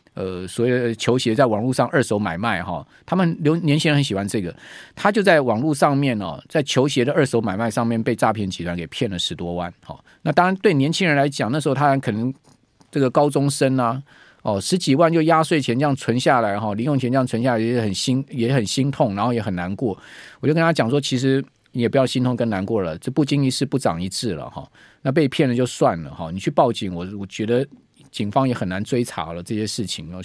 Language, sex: Chinese, male